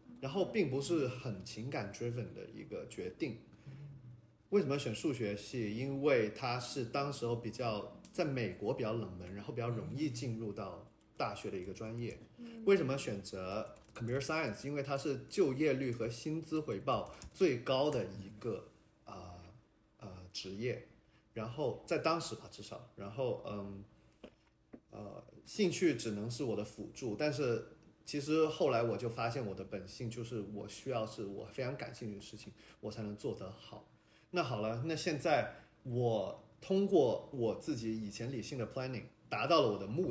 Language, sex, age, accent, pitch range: Chinese, male, 30-49, native, 105-140 Hz